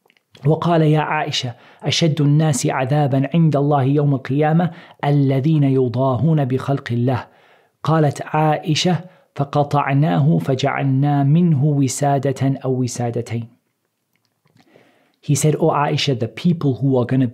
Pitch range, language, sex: 120-145 Hz, English, male